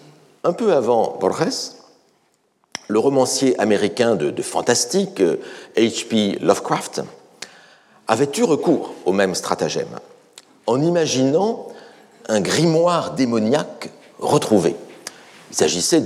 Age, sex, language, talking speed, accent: 50-69, male, French, 95 wpm, French